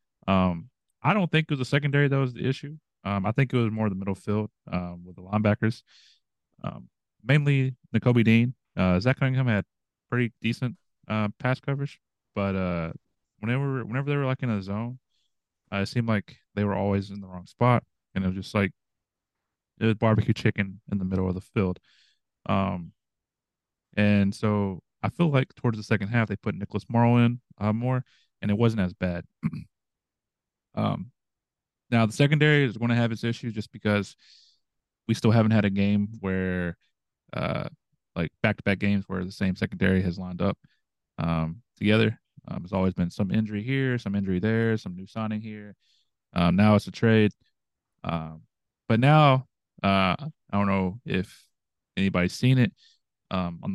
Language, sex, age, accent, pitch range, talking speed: English, male, 30-49, American, 95-120 Hz, 180 wpm